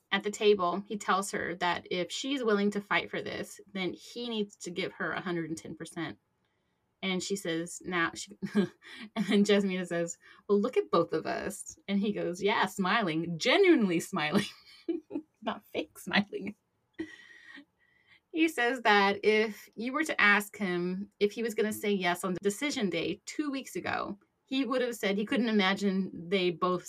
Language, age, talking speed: English, 30-49, 170 wpm